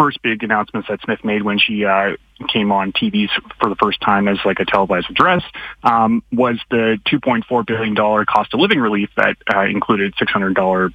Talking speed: 185 wpm